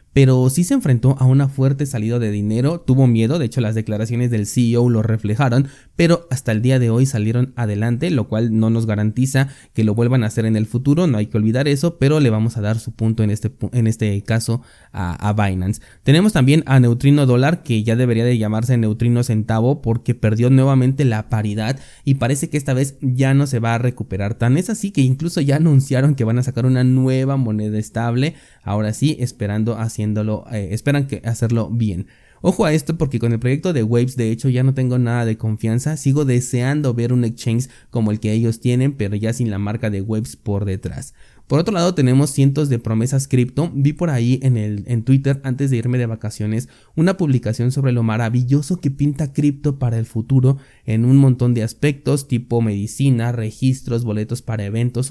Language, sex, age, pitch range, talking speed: Spanish, male, 20-39, 110-135 Hz, 205 wpm